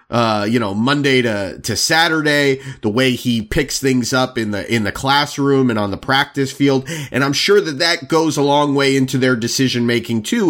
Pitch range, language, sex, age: 135-190 Hz, English, male, 30-49